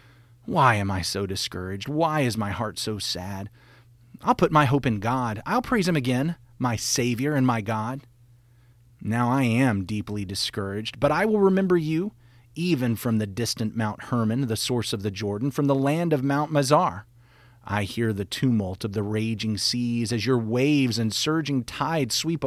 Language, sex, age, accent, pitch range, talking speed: English, male, 30-49, American, 115-145 Hz, 180 wpm